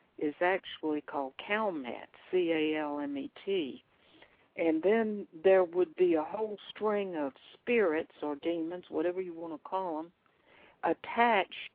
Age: 60-79